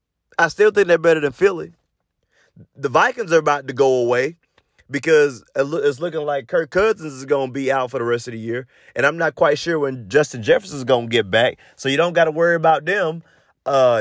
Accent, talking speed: American, 225 wpm